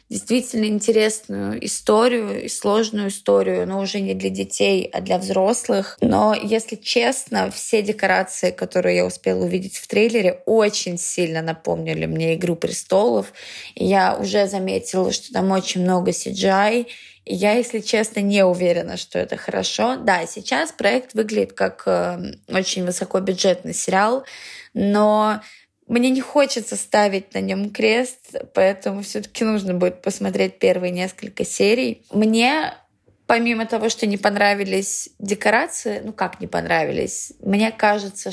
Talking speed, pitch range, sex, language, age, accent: 130 wpm, 180-220 Hz, female, Russian, 20-39, native